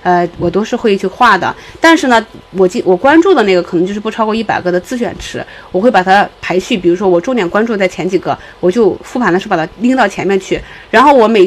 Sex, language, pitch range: female, Chinese, 185-260 Hz